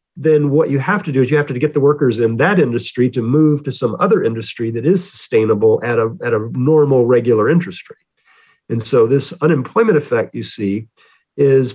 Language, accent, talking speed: English, American, 210 wpm